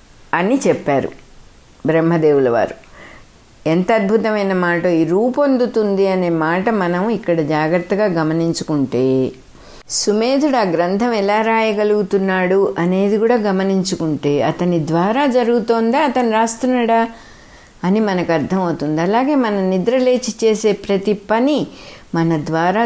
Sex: female